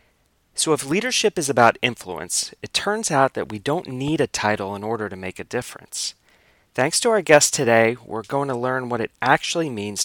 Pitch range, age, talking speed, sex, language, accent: 110-145 Hz, 30-49, 205 wpm, male, English, American